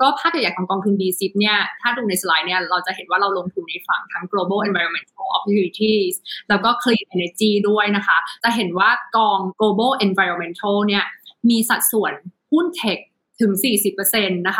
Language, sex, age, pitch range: Thai, female, 20-39, 190-235 Hz